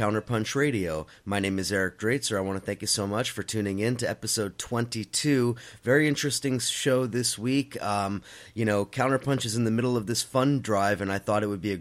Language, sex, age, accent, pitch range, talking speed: English, male, 30-49, American, 105-130 Hz, 225 wpm